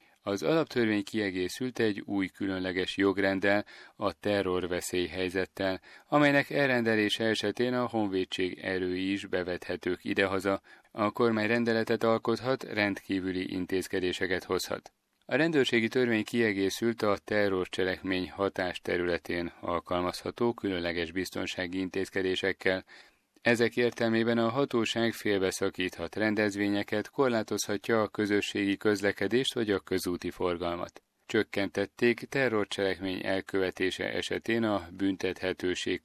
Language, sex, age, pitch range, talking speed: Hungarian, male, 30-49, 95-115 Hz, 95 wpm